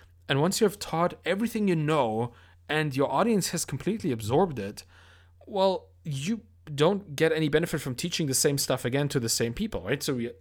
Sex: male